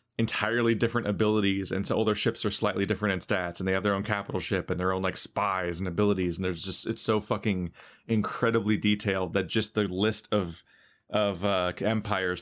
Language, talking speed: English, 210 wpm